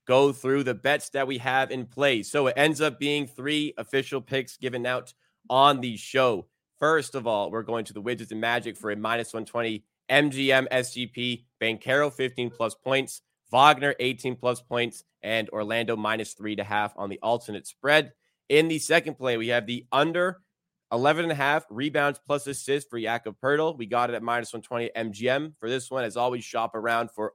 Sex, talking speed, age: male, 195 wpm, 20-39